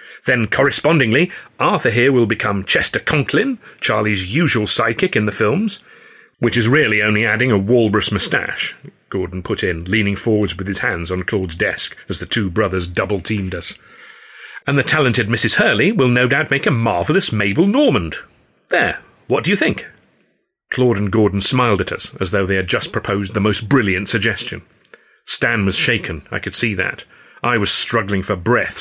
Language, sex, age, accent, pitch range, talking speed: English, male, 40-59, British, 100-140 Hz, 175 wpm